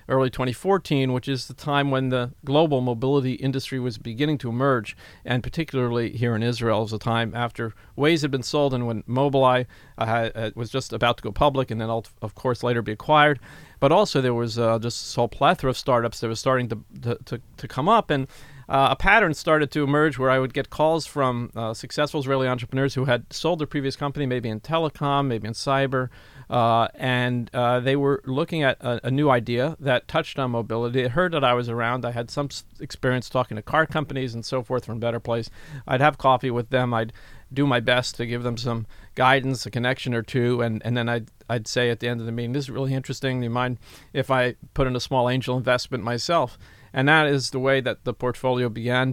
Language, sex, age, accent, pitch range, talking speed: Hebrew, male, 40-59, American, 120-135 Hz, 230 wpm